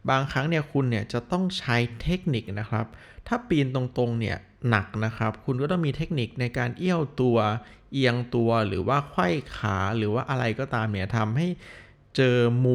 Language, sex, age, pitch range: Thai, male, 20-39, 110-140 Hz